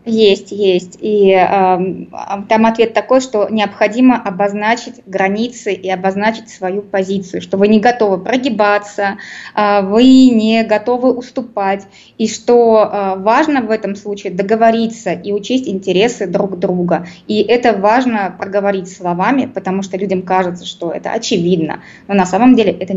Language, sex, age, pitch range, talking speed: Russian, female, 20-39, 190-230 Hz, 145 wpm